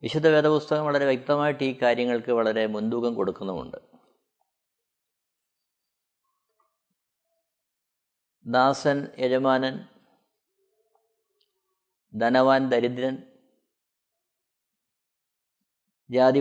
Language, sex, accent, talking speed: Malayalam, male, native, 50 wpm